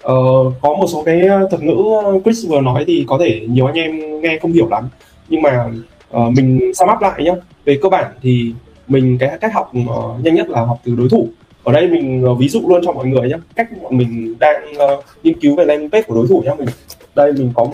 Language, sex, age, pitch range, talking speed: Vietnamese, male, 20-39, 120-165 Hz, 245 wpm